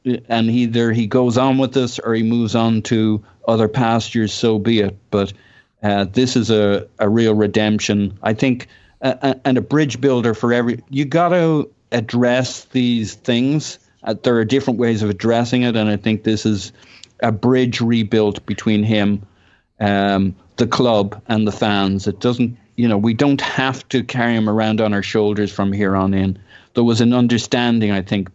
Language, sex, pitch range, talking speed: English, male, 105-125 Hz, 185 wpm